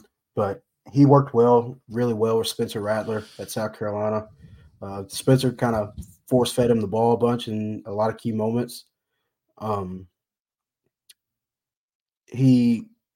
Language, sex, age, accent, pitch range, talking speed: English, male, 20-39, American, 105-125 Hz, 135 wpm